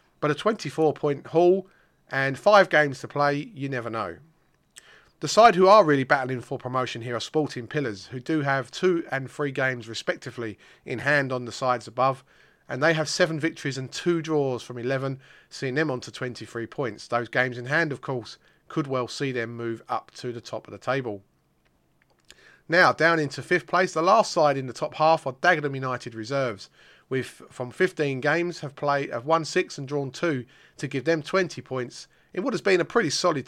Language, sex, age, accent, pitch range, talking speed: English, male, 30-49, British, 125-160 Hz, 205 wpm